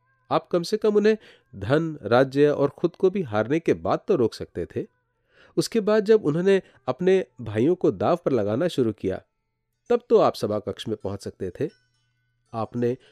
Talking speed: 185 wpm